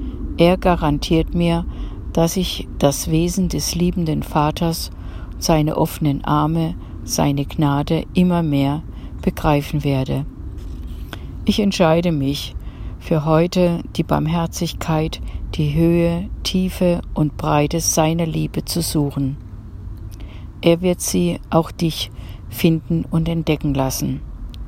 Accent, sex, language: German, female, German